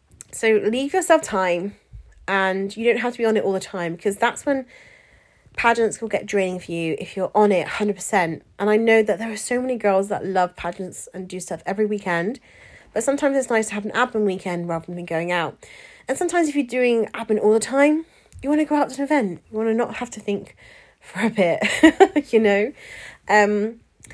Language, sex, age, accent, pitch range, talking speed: English, female, 30-49, British, 190-240 Hz, 220 wpm